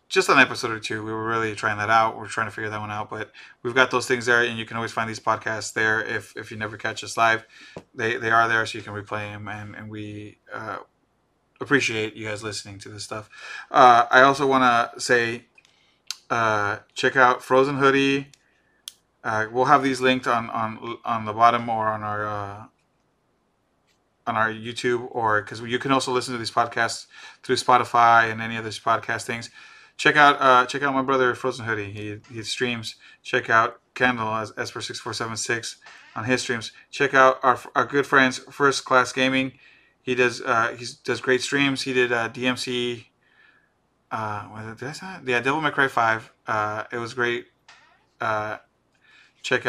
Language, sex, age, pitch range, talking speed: English, male, 20-39, 110-125 Hz, 195 wpm